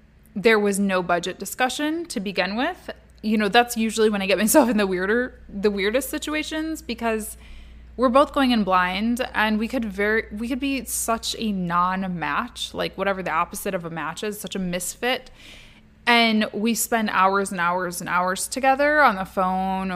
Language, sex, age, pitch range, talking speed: English, female, 20-39, 185-230 Hz, 185 wpm